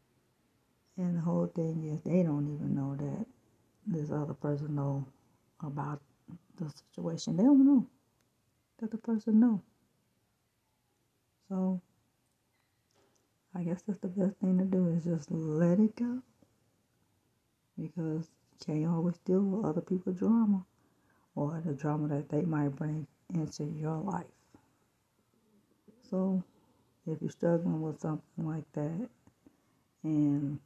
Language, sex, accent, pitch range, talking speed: English, female, American, 150-190 Hz, 130 wpm